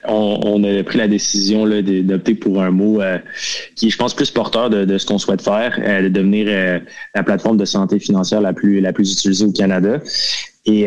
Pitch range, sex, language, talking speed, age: 95-105 Hz, male, French, 225 wpm, 20-39